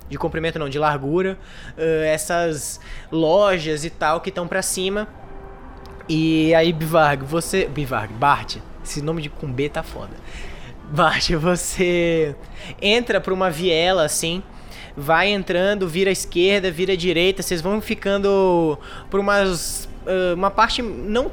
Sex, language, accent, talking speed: male, Portuguese, Brazilian, 140 wpm